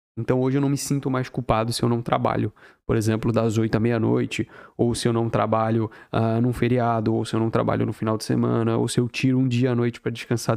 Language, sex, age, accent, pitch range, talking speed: Portuguese, male, 20-39, Brazilian, 115-140 Hz, 255 wpm